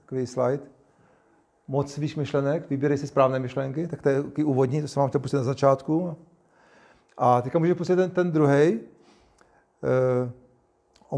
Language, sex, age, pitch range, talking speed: Czech, male, 40-59, 135-155 Hz, 150 wpm